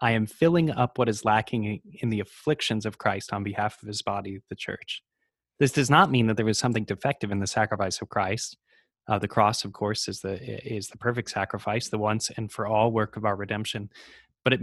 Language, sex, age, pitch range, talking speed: English, male, 20-39, 100-120 Hz, 225 wpm